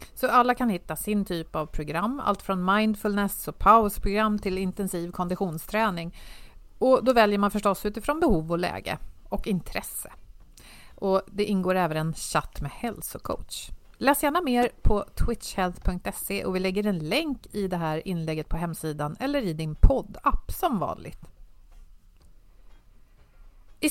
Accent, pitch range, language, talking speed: native, 170-225 Hz, Swedish, 145 wpm